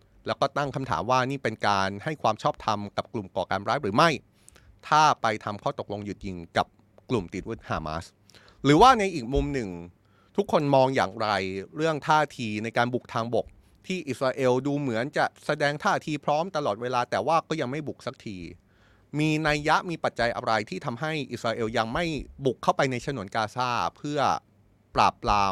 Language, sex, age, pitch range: Thai, male, 20-39, 105-140 Hz